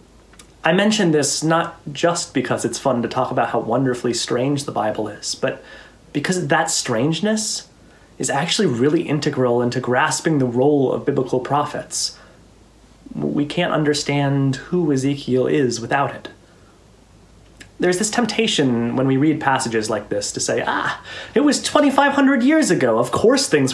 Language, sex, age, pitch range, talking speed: English, male, 30-49, 120-160 Hz, 150 wpm